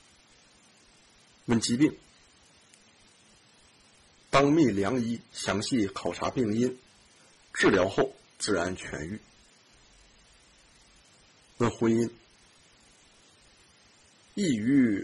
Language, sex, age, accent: Chinese, male, 50-69, native